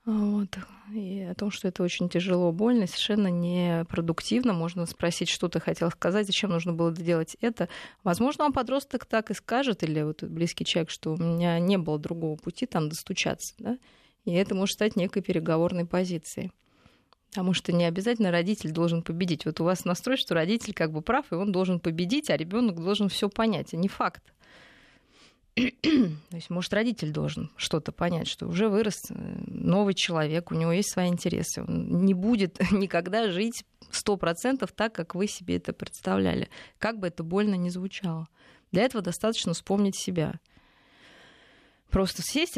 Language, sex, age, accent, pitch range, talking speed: Russian, female, 20-39, native, 170-210 Hz, 170 wpm